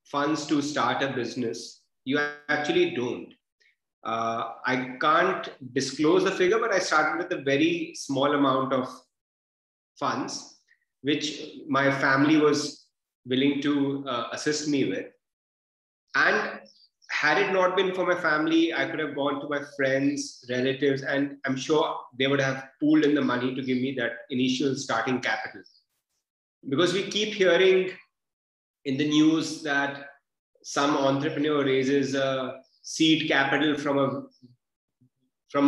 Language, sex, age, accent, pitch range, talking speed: English, male, 30-49, Indian, 135-165 Hz, 145 wpm